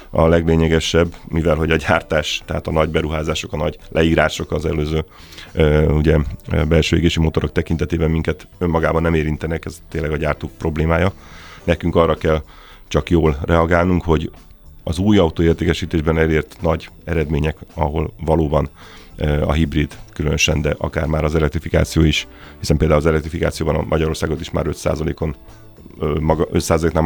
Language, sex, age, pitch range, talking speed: Hungarian, male, 30-49, 80-85 Hz, 135 wpm